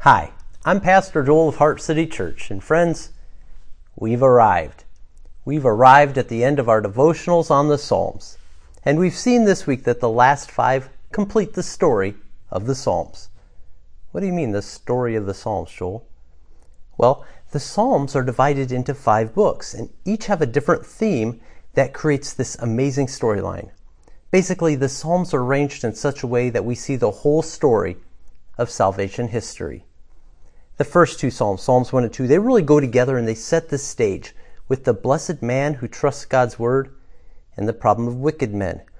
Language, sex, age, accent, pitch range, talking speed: English, male, 40-59, American, 105-145 Hz, 180 wpm